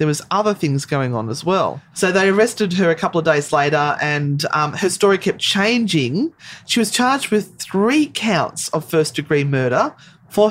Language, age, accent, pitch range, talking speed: English, 30-49, Australian, 150-185 Hz, 195 wpm